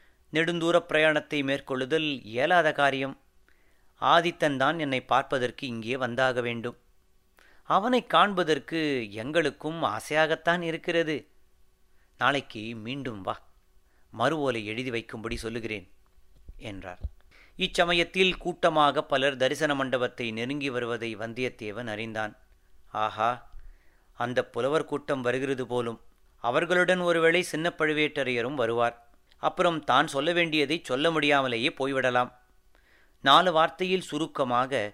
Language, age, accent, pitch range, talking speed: Tamil, 30-49, native, 110-155 Hz, 95 wpm